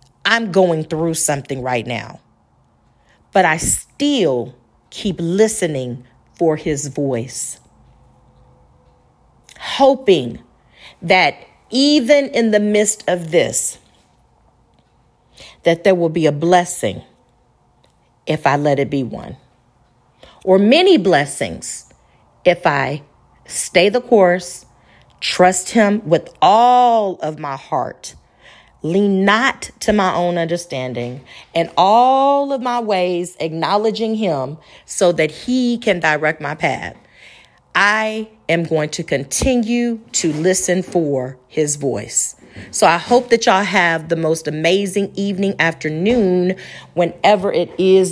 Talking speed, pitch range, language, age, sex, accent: 115 wpm, 150-210 Hz, English, 40-59, female, American